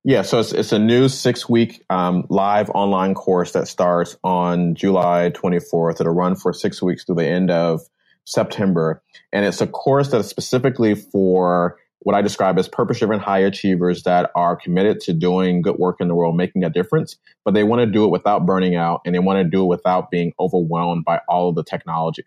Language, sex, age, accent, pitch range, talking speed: English, male, 30-49, American, 90-105 Hz, 205 wpm